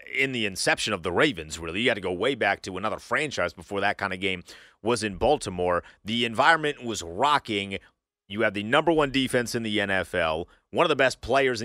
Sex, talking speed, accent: male, 220 wpm, American